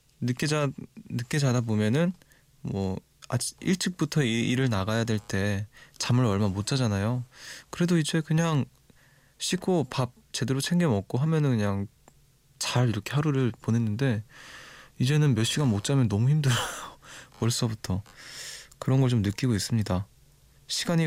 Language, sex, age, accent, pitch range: Korean, male, 20-39, native, 110-145 Hz